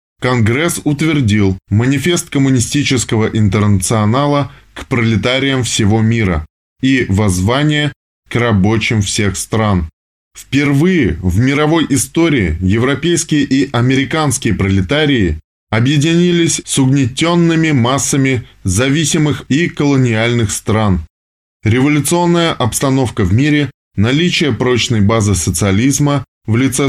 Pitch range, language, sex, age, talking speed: 100-140 Hz, Russian, male, 20-39, 90 wpm